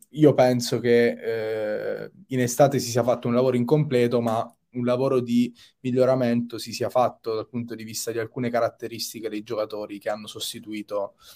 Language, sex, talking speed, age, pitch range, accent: Italian, male, 170 wpm, 20-39, 115-135 Hz, native